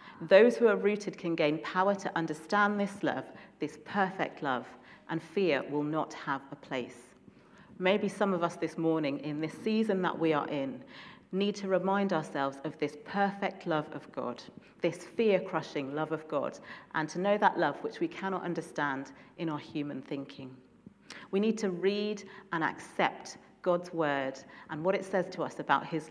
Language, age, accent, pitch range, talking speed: English, 40-59, British, 155-195 Hz, 180 wpm